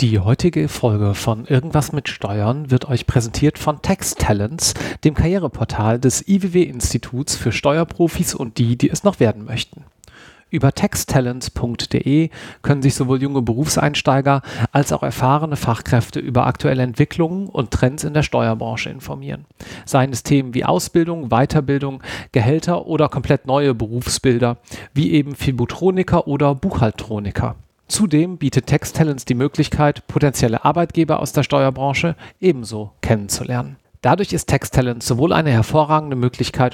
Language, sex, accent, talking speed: German, male, German, 130 wpm